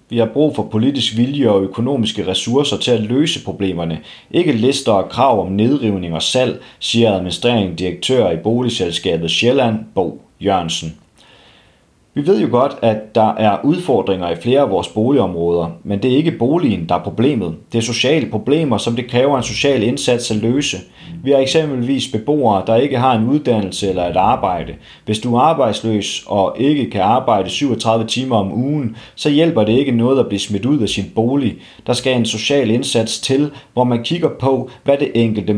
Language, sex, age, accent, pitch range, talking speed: Danish, male, 30-49, native, 100-130 Hz, 185 wpm